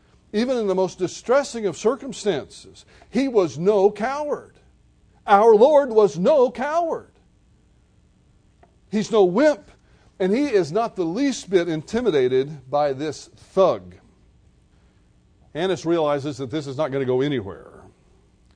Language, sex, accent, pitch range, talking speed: English, male, American, 135-185 Hz, 130 wpm